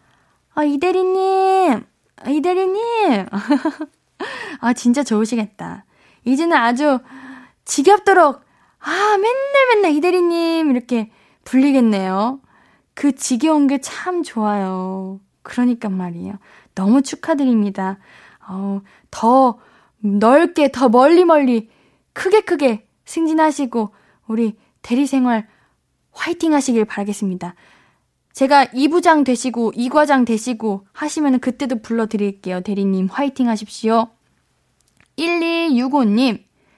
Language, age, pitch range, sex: Korean, 20-39, 225-320 Hz, female